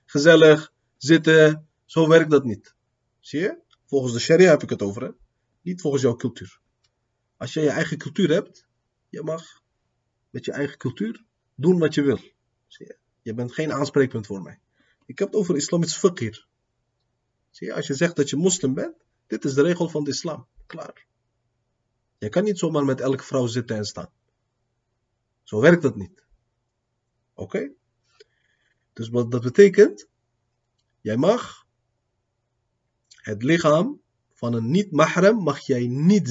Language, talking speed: Dutch, 160 wpm